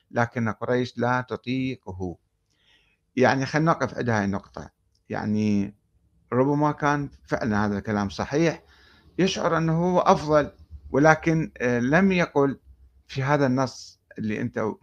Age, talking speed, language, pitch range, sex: 60-79, 115 wpm, Arabic, 105-145 Hz, male